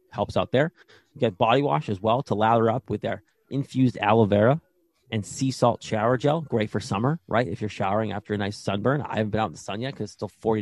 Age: 30-49